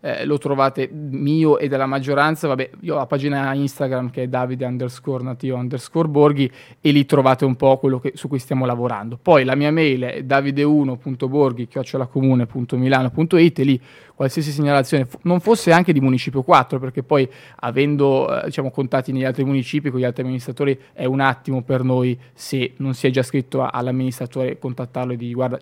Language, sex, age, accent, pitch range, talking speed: Italian, male, 20-39, native, 130-140 Hz, 185 wpm